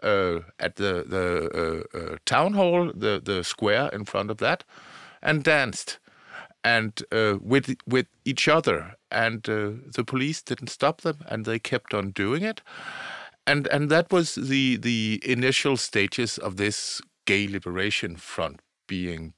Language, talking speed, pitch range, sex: English, 155 wpm, 95-130 Hz, male